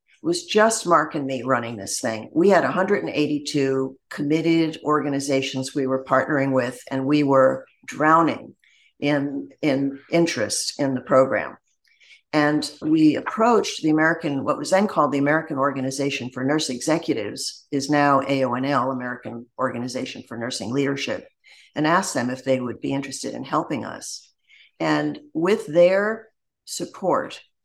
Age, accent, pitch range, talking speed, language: 50-69, American, 135-160 Hz, 140 wpm, English